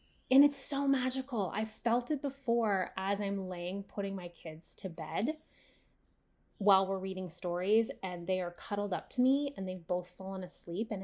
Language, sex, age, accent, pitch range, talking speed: English, female, 10-29, American, 185-255 Hz, 180 wpm